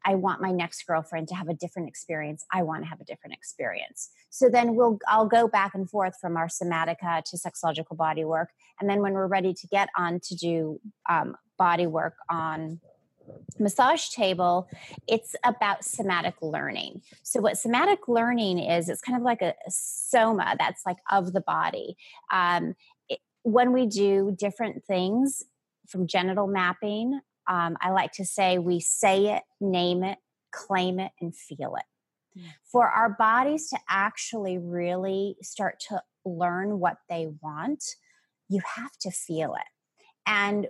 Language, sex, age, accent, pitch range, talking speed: English, female, 30-49, American, 175-220 Hz, 160 wpm